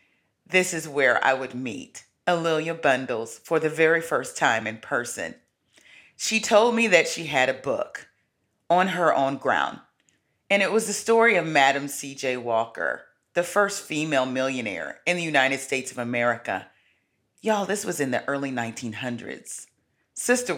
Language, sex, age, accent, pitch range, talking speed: English, female, 40-59, American, 135-195 Hz, 155 wpm